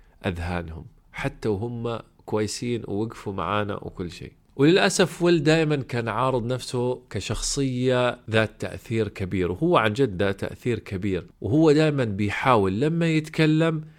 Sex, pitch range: male, 105-140 Hz